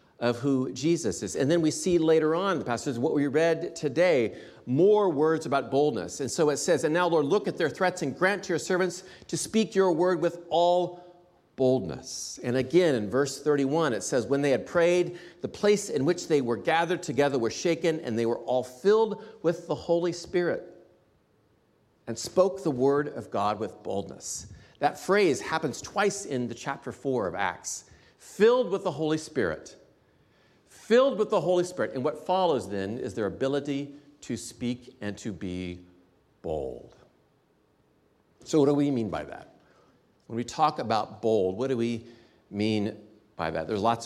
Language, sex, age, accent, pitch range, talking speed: English, male, 40-59, American, 110-170 Hz, 180 wpm